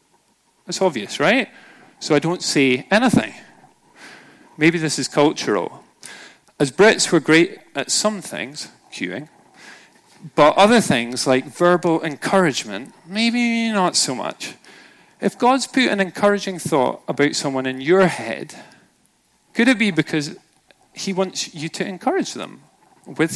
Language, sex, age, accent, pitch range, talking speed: English, male, 40-59, British, 135-195 Hz, 135 wpm